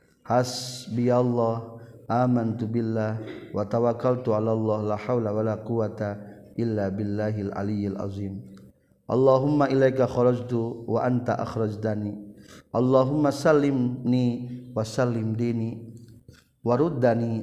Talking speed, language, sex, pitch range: 95 wpm, Indonesian, male, 105-125 Hz